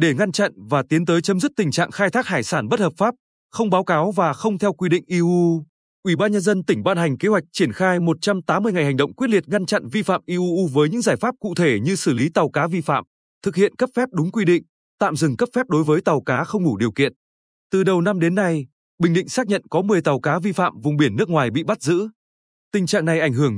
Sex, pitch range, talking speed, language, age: male, 145-200 Hz, 270 wpm, Vietnamese, 20-39